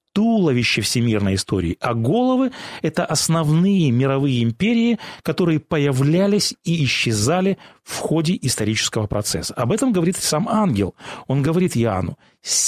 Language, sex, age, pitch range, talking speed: Russian, male, 30-49, 120-180 Hz, 130 wpm